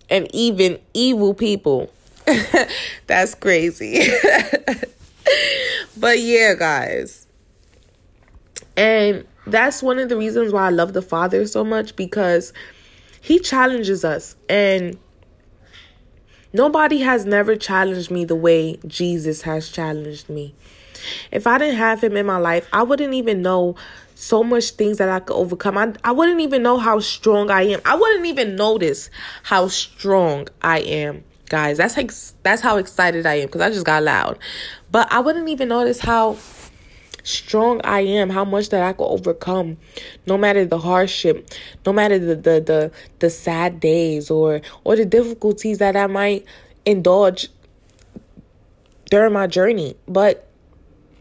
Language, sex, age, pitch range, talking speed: English, female, 20-39, 170-230 Hz, 150 wpm